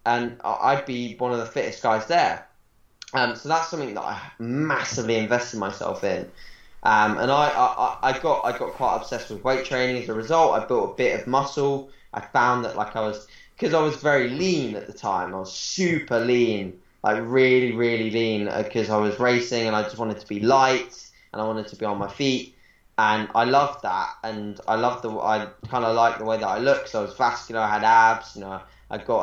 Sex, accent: male, British